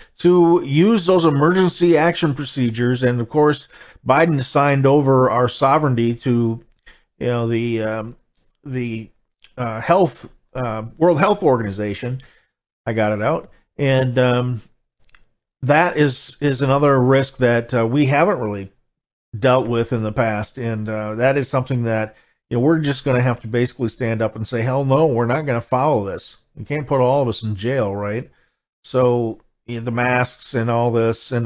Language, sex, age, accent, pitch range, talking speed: English, male, 50-69, American, 115-140 Hz, 160 wpm